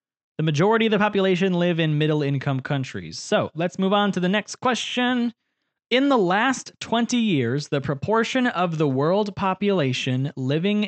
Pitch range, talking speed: 135-200 Hz, 160 wpm